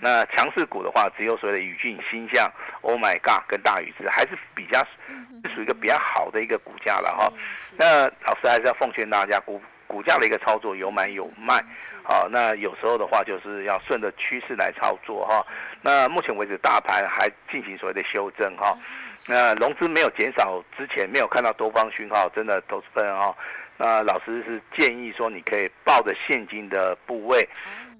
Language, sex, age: Chinese, male, 50-69